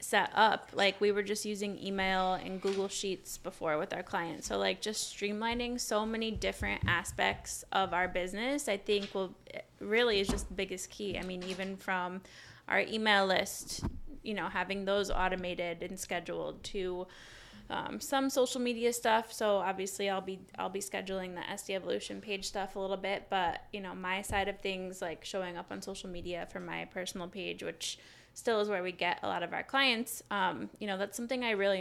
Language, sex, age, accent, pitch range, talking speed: English, female, 10-29, American, 185-230 Hz, 200 wpm